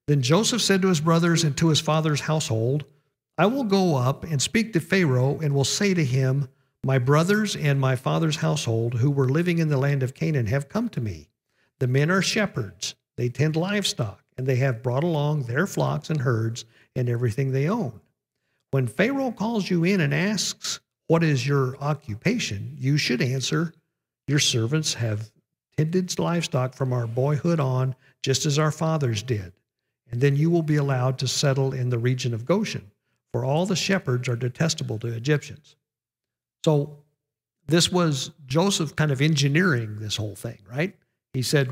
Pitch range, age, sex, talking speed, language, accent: 130-160 Hz, 50-69, male, 180 wpm, English, American